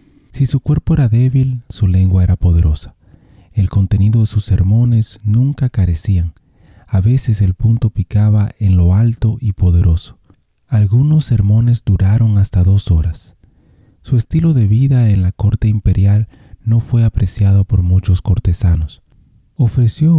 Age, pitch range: 30-49, 95-115 Hz